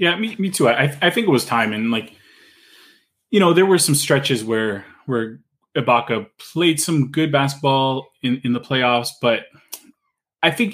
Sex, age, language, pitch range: male, 20-39, English, 110-135 Hz